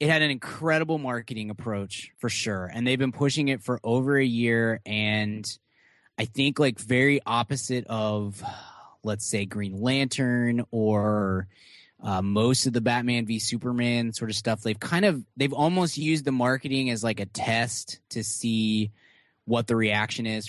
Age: 20-39